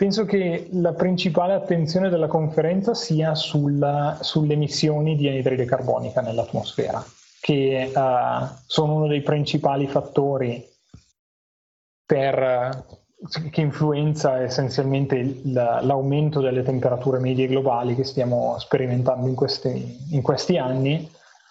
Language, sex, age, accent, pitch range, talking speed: Italian, male, 20-39, native, 135-160 Hz, 100 wpm